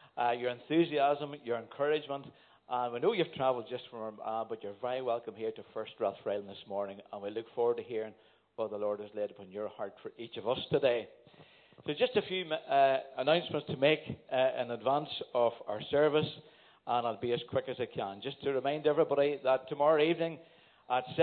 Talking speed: 205 wpm